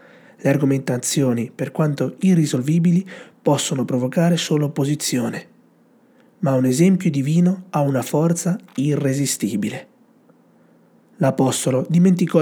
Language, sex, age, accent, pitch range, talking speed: Italian, male, 30-49, native, 130-180 Hz, 90 wpm